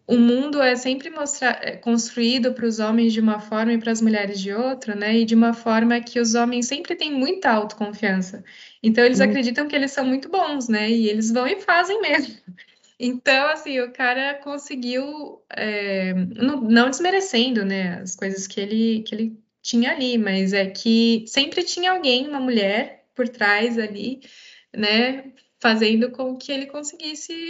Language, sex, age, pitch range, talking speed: Portuguese, female, 20-39, 210-255 Hz, 175 wpm